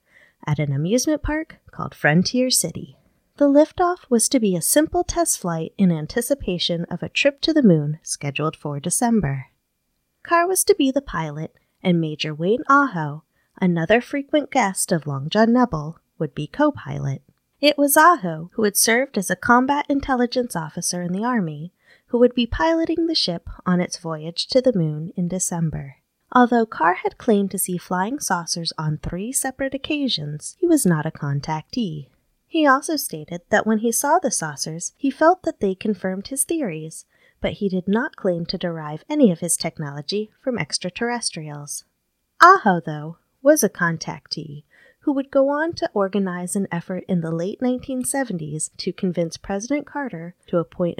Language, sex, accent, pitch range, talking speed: English, female, American, 165-265 Hz, 170 wpm